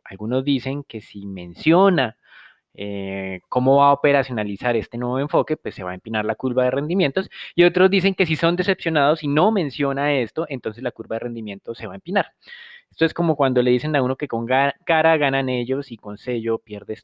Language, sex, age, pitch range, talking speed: Spanish, male, 20-39, 115-145 Hz, 210 wpm